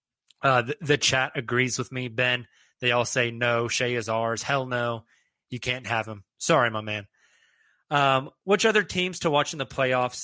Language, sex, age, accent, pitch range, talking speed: English, male, 20-39, American, 120-150 Hz, 195 wpm